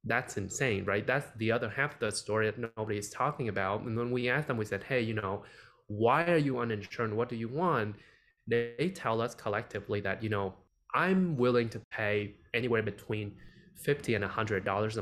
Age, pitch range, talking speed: 20-39, 105-125 Hz, 200 wpm